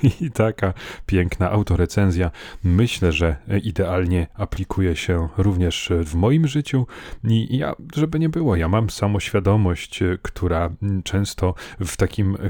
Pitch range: 90-110 Hz